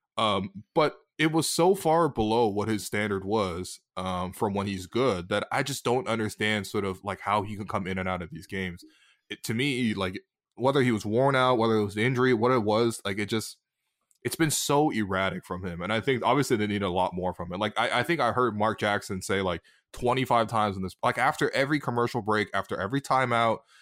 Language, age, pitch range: English, 20-39, 100-135 Hz